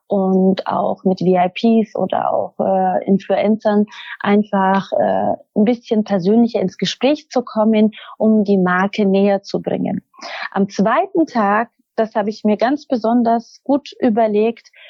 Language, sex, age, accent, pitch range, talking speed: German, female, 30-49, German, 210-275 Hz, 135 wpm